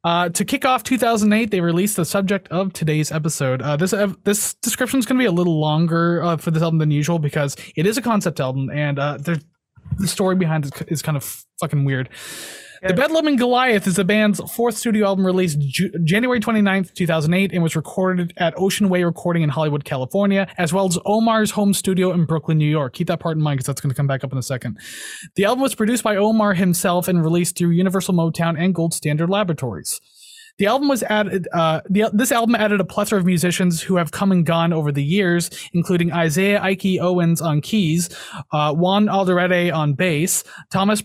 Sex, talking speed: male, 210 wpm